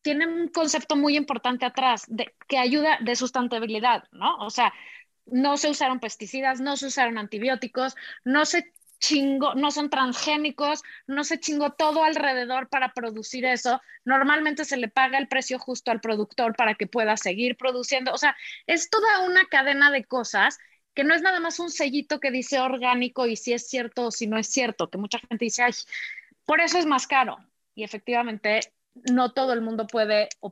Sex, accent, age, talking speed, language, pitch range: female, Mexican, 20-39, 185 wpm, English, 235-310 Hz